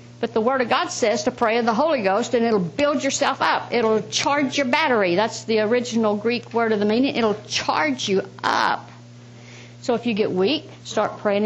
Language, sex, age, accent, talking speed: English, female, 60-79, American, 205 wpm